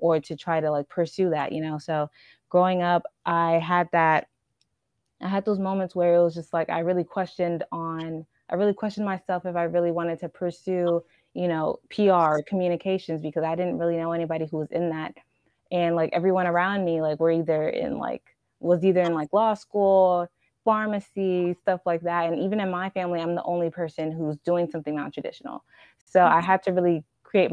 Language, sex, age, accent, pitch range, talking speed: English, female, 20-39, American, 165-185 Hz, 200 wpm